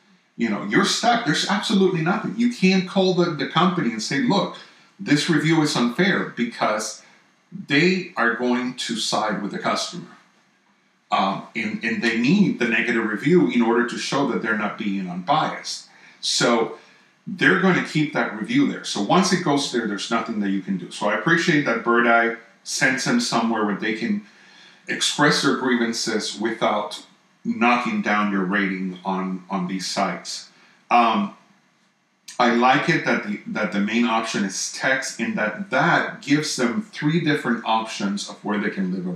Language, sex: English, male